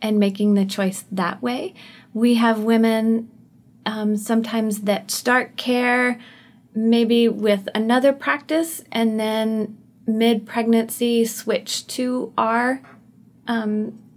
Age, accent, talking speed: 30-49, American, 105 wpm